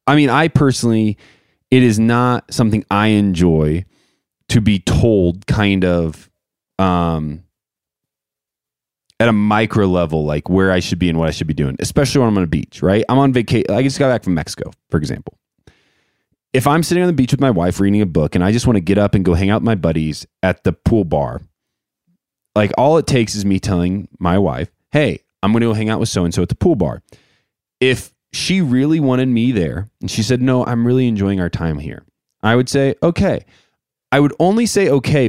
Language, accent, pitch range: English, American, 95-125 Hz